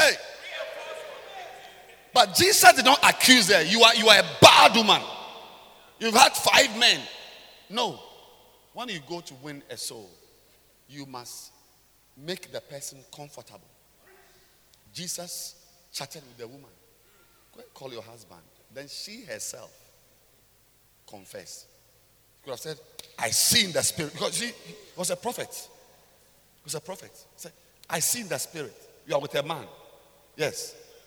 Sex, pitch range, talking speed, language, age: male, 130-215 Hz, 150 wpm, English, 50-69